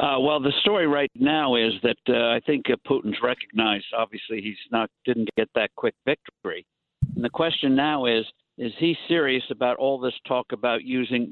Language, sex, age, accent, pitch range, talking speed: English, male, 60-79, American, 115-135 Hz, 190 wpm